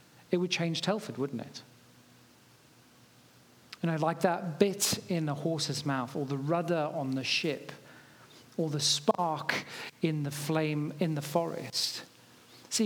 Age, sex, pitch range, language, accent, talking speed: 40-59, male, 145-180 Hz, English, British, 145 wpm